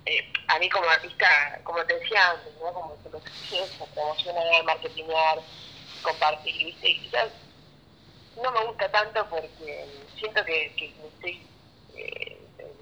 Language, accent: Spanish, Argentinian